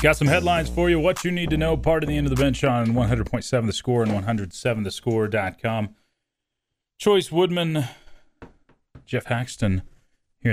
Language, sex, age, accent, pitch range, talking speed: English, male, 30-49, American, 100-130 Hz, 155 wpm